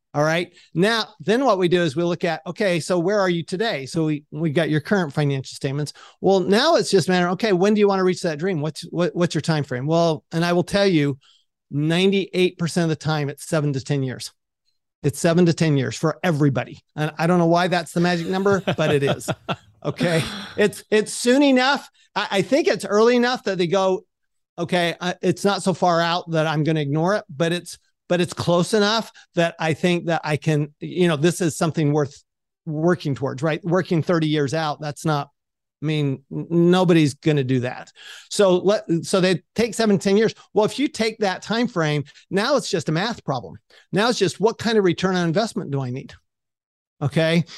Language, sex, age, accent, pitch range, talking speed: English, male, 40-59, American, 155-200 Hz, 220 wpm